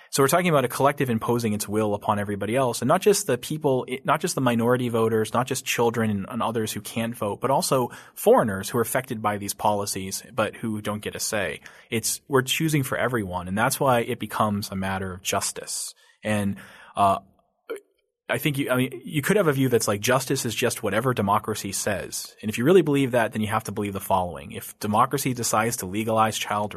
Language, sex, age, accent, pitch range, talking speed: English, male, 30-49, American, 100-130 Hz, 225 wpm